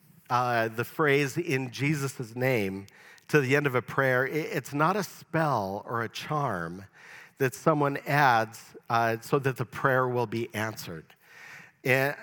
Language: English